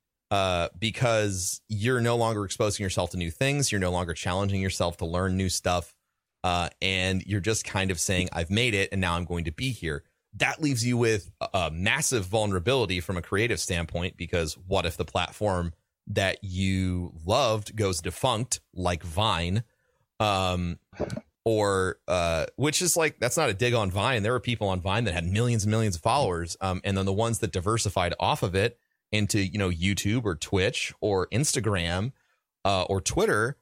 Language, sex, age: English, male, 30-49